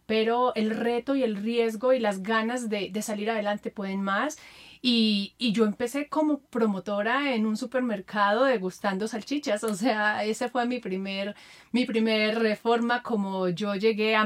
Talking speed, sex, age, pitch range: 165 wpm, female, 30-49, 195-235 Hz